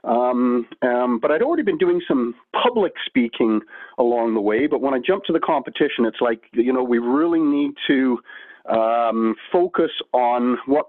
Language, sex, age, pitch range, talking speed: English, male, 40-59, 115-135 Hz, 175 wpm